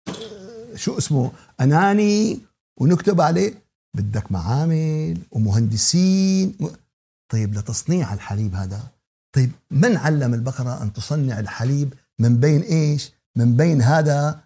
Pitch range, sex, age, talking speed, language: 125-170 Hz, male, 60-79, 105 wpm, Arabic